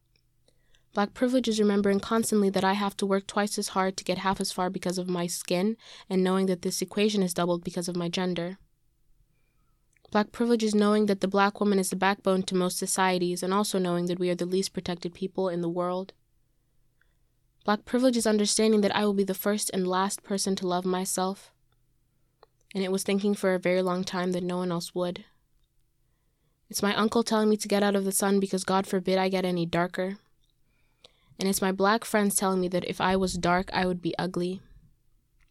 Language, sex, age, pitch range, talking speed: English, female, 20-39, 175-200 Hz, 210 wpm